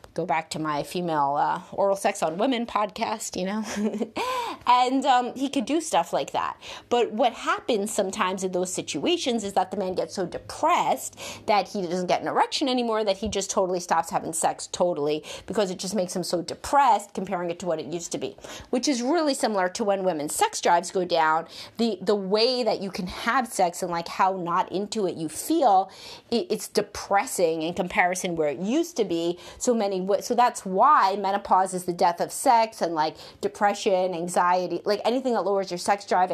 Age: 30-49